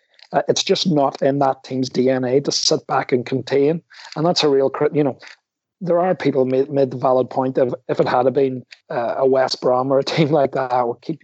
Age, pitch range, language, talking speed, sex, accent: 30-49, 130-150 Hz, English, 240 wpm, male, British